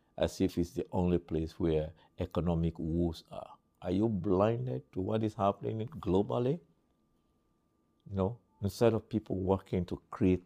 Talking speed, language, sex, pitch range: 145 wpm, English, male, 75-95 Hz